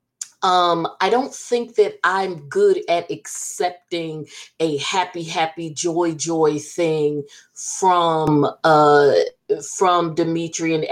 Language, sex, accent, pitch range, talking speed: English, female, American, 160-255 Hz, 105 wpm